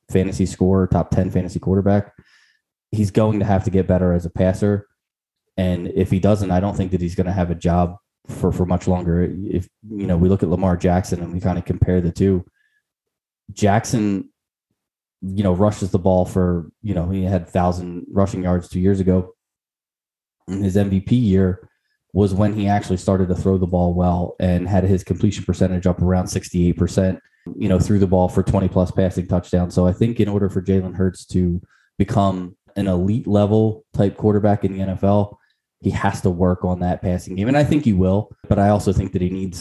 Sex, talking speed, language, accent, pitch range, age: male, 205 wpm, English, American, 90-100 Hz, 20-39